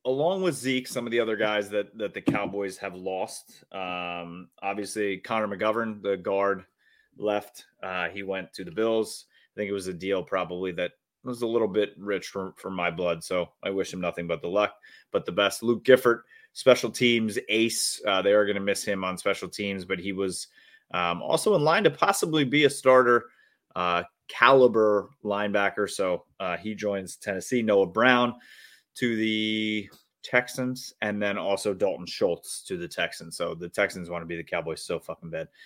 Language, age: English, 30-49